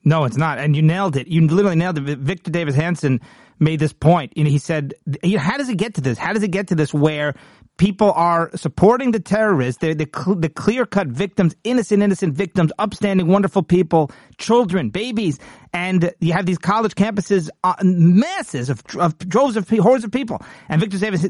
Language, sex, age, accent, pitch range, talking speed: English, male, 40-59, American, 150-195 Hz, 210 wpm